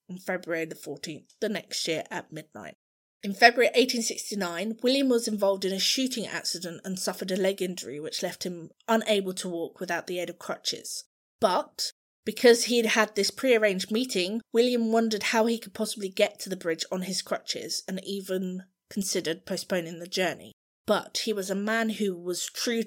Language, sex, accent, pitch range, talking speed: English, female, British, 180-225 Hz, 180 wpm